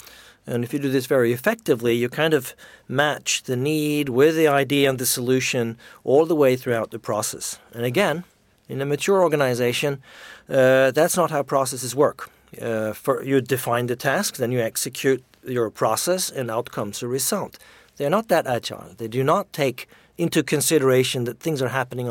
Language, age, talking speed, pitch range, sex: English, 50-69, 180 wpm, 120-150 Hz, male